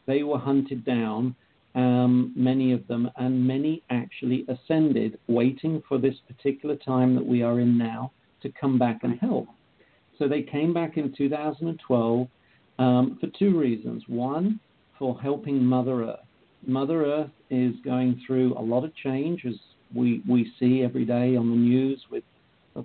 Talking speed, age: 165 wpm, 50-69